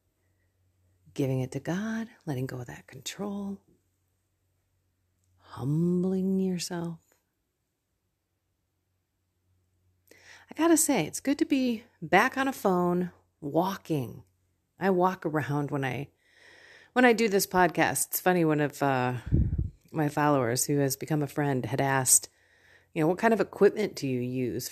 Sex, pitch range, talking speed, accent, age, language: female, 125-190 Hz, 135 wpm, American, 40-59, English